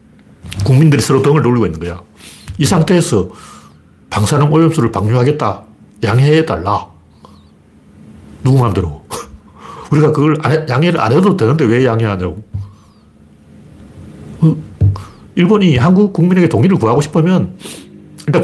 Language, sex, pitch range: Korean, male, 105-155 Hz